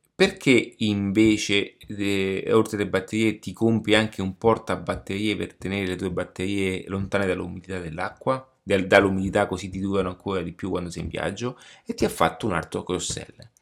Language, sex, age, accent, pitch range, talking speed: Italian, male, 30-49, native, 95-110 Hz, 170 wpm